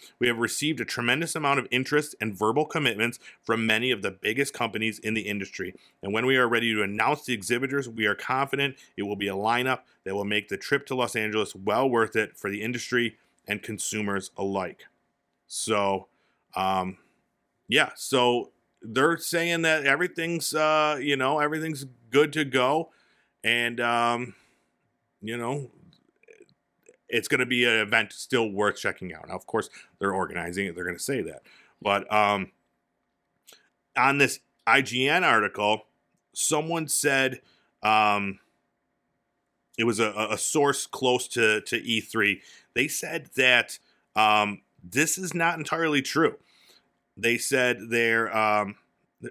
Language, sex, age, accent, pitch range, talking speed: English, male, 40-59, American, 105-140 Hz, 150 wpm